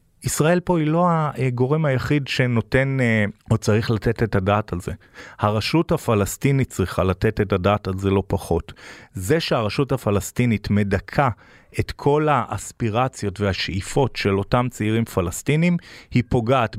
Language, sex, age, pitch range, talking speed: Hebrew, male, 40-59, 105-135 Hz, 135 wpm